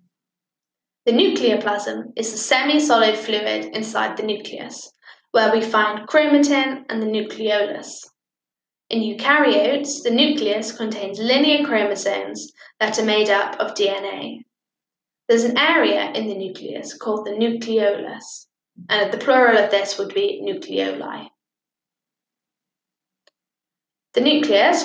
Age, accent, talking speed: 10-29, British, 120 wpm